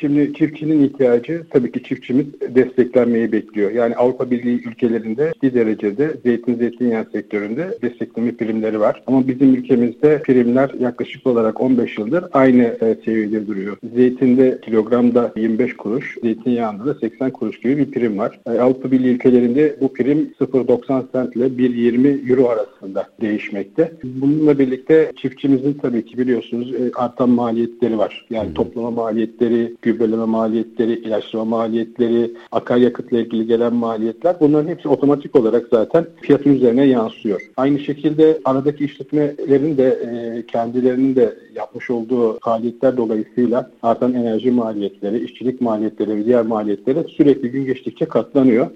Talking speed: 130 wpm